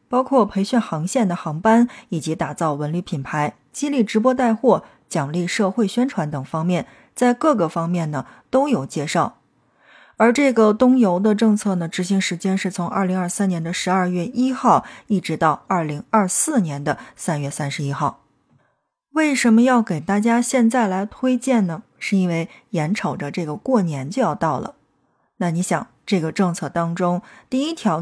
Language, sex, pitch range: Chinese, female, 170-230 Hz